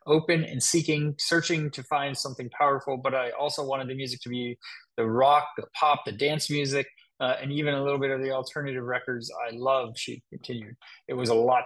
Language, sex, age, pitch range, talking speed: English, male, 20-39, 120-150 Hz, 210 wpm